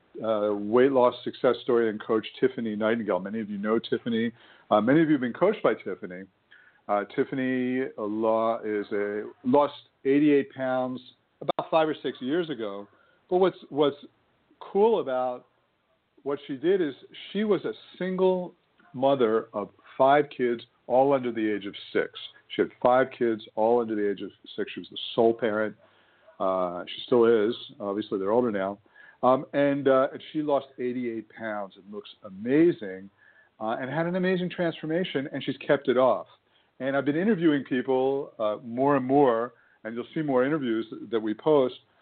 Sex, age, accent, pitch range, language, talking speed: male, 50-69, American, 115-145 Hz, English, 170 wpm